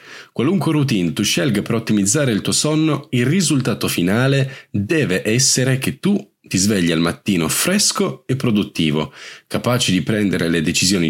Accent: native